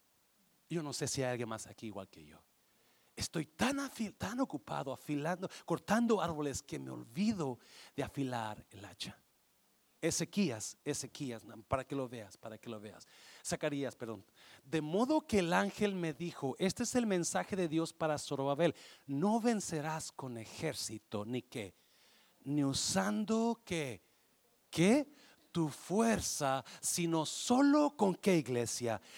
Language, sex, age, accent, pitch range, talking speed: Spanish, male, 40-59, Mexican, 160-270 Hz, 145 wpm